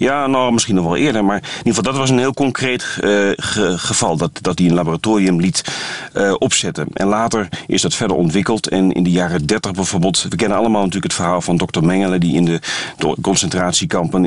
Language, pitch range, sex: Dutch, 85-100 Hz, male